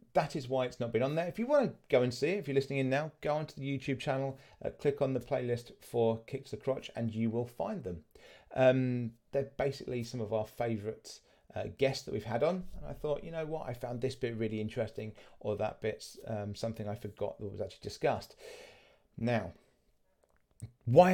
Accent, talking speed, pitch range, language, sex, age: British, 220 wpm, 110-135 Hz, English, male, 30-49